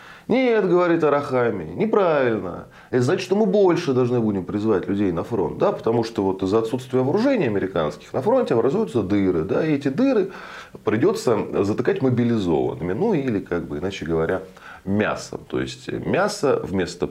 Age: 20-39